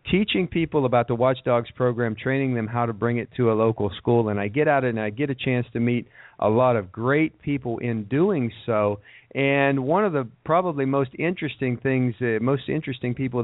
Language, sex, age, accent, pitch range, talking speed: English, male, 50-69, American, 110-130 Hz, 210 wpm